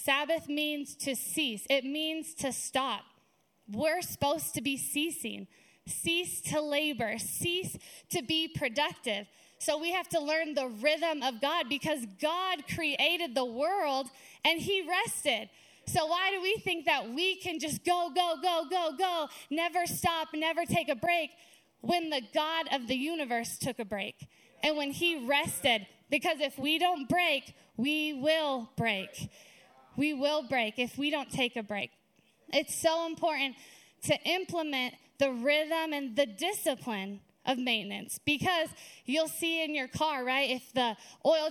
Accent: American